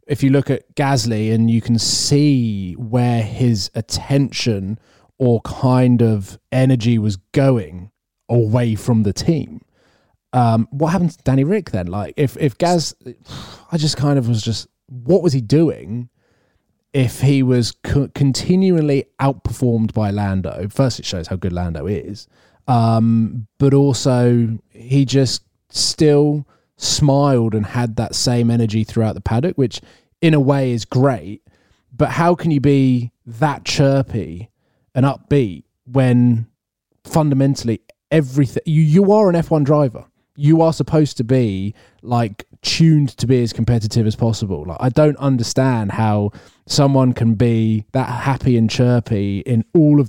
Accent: British